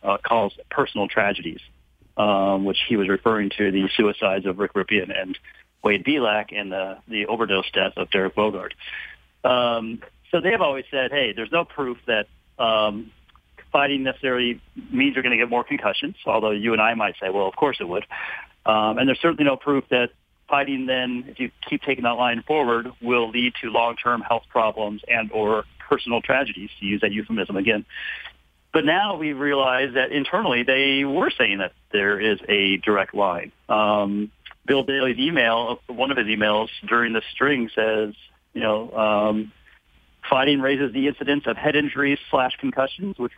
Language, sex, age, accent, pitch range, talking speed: English, male, 40-59, American, 110-130 Hz, 180 wpm